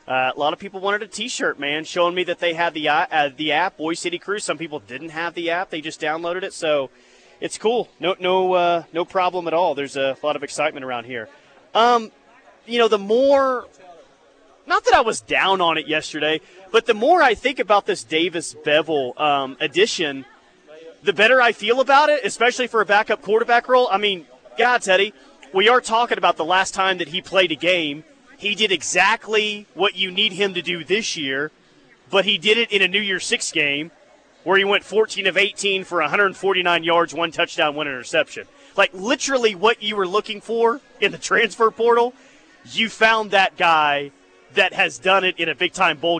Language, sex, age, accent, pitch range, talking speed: English, male, 30-49, American, 160-215 Hz, 205 wpm